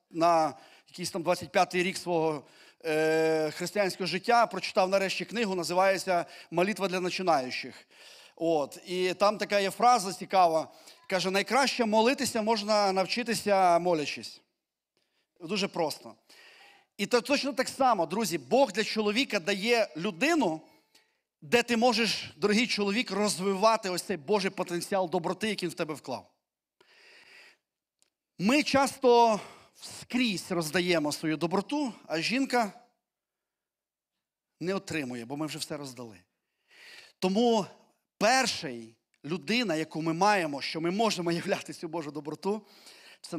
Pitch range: 170-235 Hz